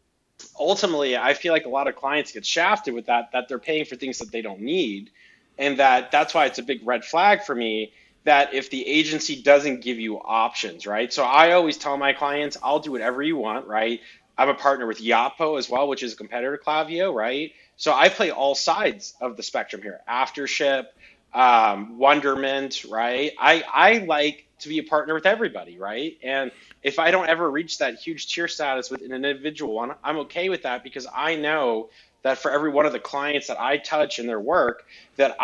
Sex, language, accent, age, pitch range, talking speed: male, English, American, 30-49, 125-155 Hz, 210 wpm